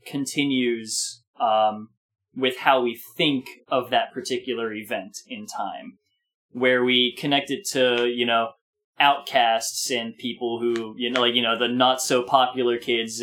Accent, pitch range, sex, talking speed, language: American, 120-150 Hz, male, 140 wpm, English